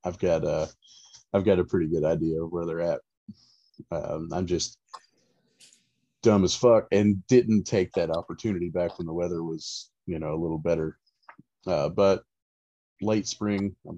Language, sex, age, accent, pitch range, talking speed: English, male, 30-49, American, 85-100 Hz, 170 wpm